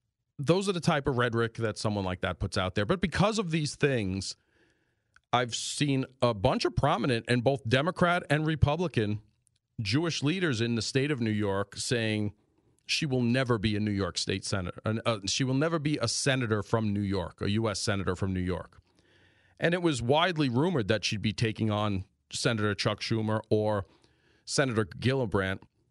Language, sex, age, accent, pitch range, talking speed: English, male, 40-59, American, 105-130 Hz, 185 wpm